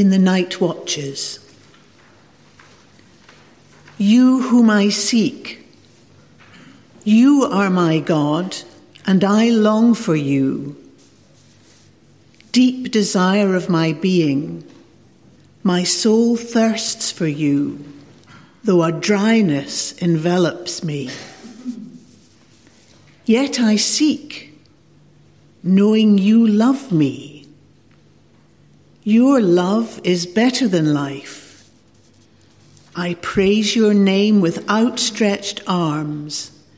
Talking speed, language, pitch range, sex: 85 wpm, English, 150-215 Hz, female